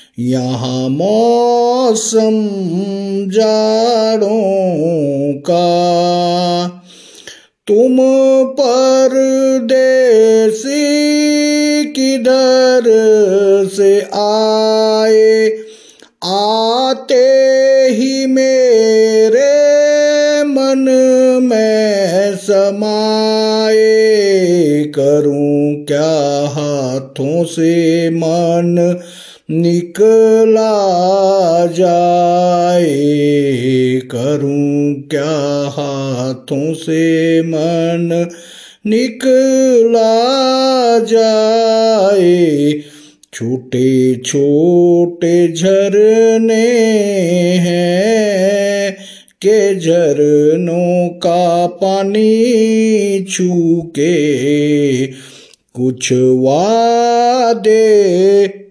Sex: male